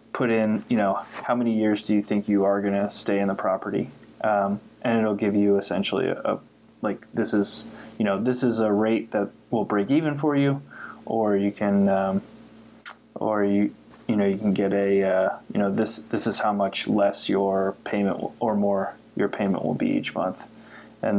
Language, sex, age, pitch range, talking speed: English, male, 20-39, 100-110 Hz, 205 wpm